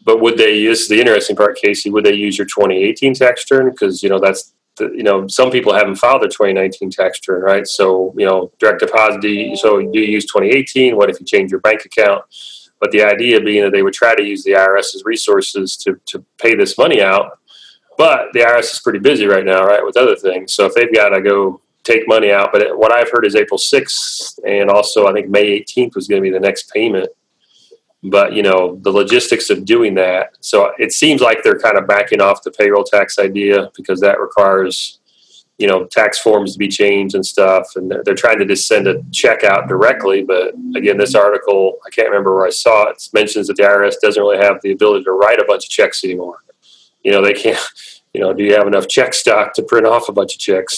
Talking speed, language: 235 wpm, English